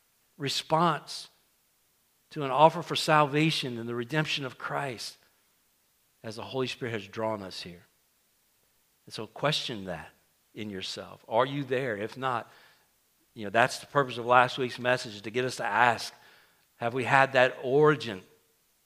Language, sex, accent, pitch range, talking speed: English, male, American, 110-130 Hz, 160 wpm